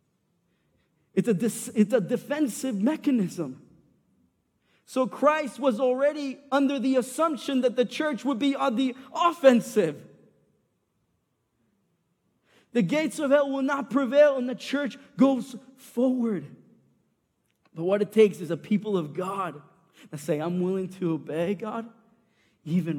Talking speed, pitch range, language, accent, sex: 130 wpm, 170-245 Hz, English, American, male